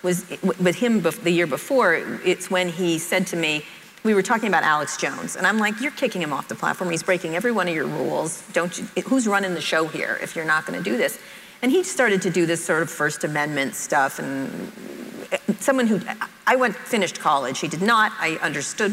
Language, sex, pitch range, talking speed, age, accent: English, female, 180-260 Hz, 225 wpm, 40-59, American